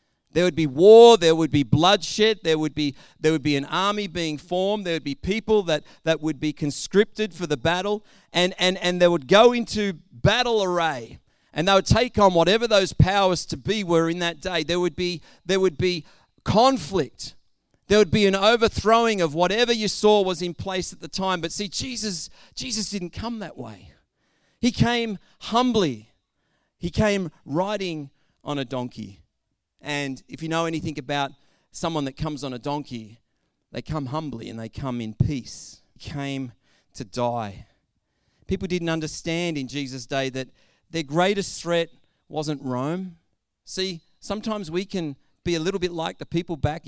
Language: English